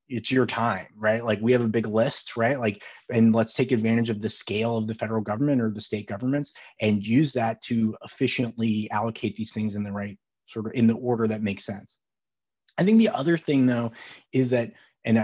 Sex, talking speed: male, 215 wpm